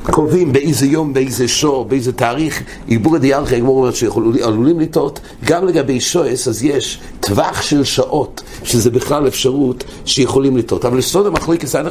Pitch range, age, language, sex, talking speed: 120-150 Hz, 60-79, English, male, 145 wpm